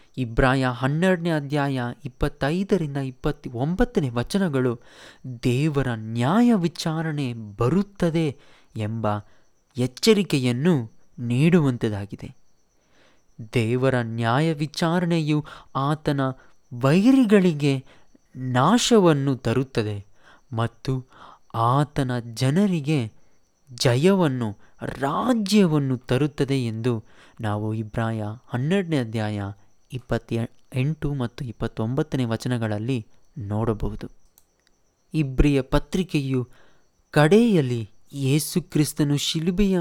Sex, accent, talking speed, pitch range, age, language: male, native, 65 wpm, 120-160 Hz, 20-39, Kannada